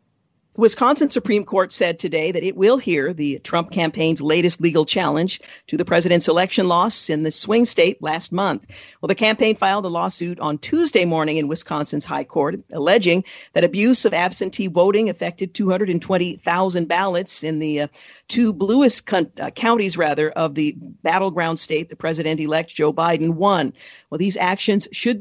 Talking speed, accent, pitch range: 170 wpm, American, 160-200 Hz